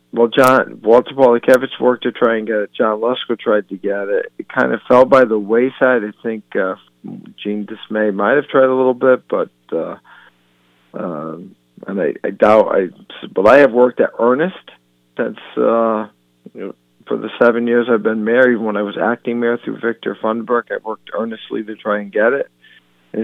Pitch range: 100-120 Hz